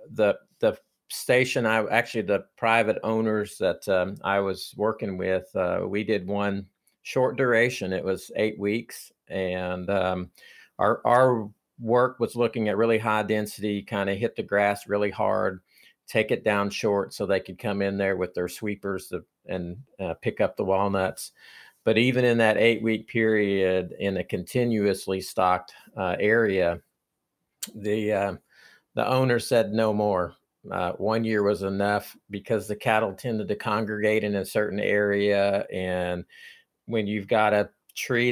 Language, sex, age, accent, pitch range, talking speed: English, male, 50-69, American, 95-110 Hz, 160 wpm